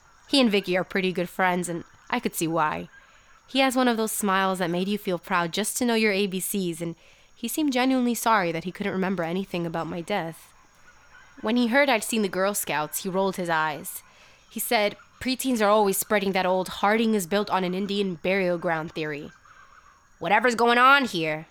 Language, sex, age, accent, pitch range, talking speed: English, female, 20-39, American, 165-210 Hz, 205 wpm